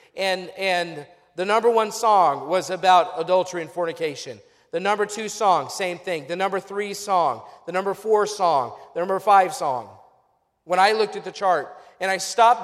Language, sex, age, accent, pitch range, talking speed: English, male, 40-59, American, 190-240 Hz, 180 wpm